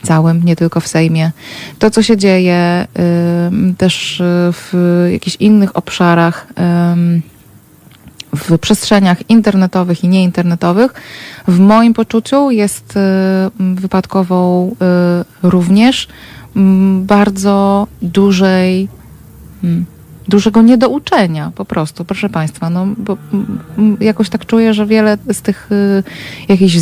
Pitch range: 175-210 Hz